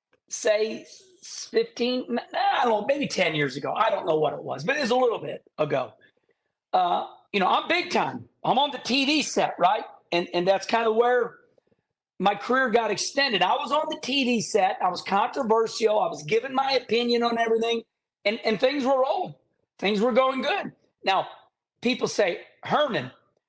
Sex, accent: male, American